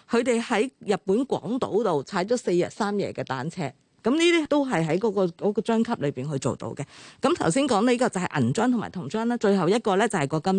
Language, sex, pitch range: Chinese, female, 170-225 Hz